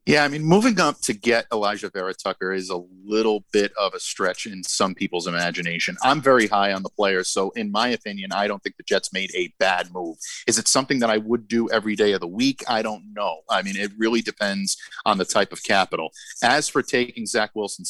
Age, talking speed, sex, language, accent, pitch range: 40-59, 235 wpm, male, English, American, 95-115 Hz